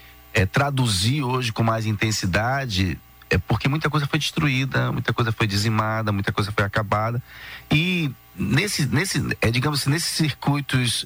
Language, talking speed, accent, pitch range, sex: Portuguese, 150 wpm, Brazilian, 95-125 Hz, male